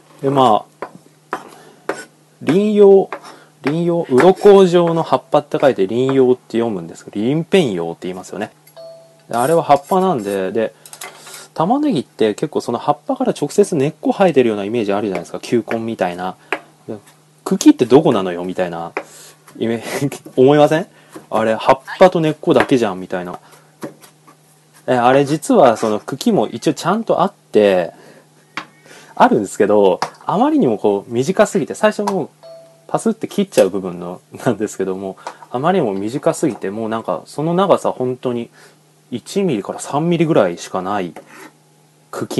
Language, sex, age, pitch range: Japanese, male, 20-39, 105-170 Hz